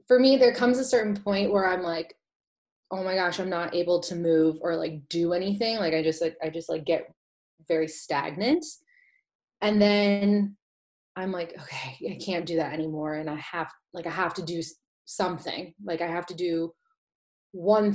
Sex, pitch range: female, 170-210 Hz